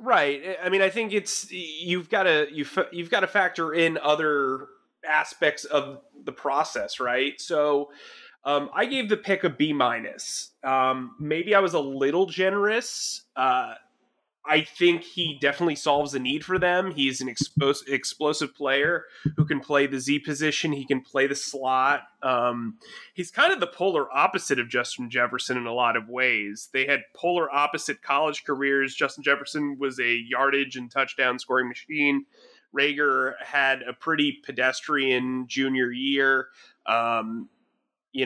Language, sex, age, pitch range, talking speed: English, male, 30-49, 125-155 Hz, 155 wpm